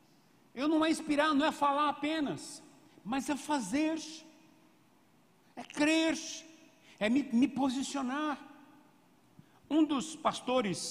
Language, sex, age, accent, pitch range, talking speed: Portuguese, male, 60-79, Brazilian, 180-265 Hz, 110 wpm